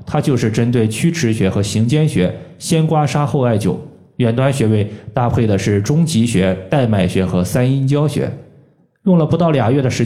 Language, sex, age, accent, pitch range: Chinese, male, 20-39, native, 105-150 Hz